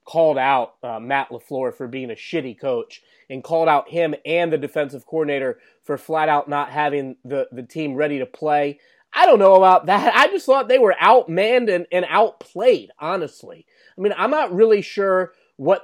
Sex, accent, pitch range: male, American, 155-195 Hz